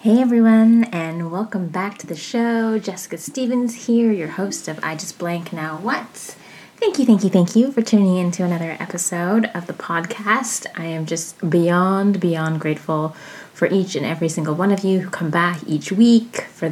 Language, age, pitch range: English, 20-39, 160-205 Hz